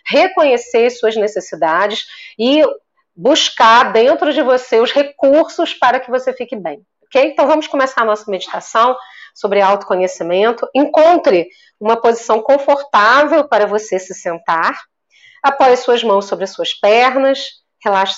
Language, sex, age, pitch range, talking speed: Portuguese, female, 40-59, 215-295 Hz, 130 wpm